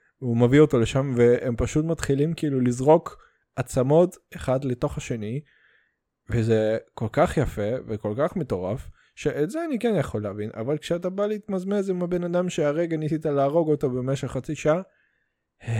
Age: 20-39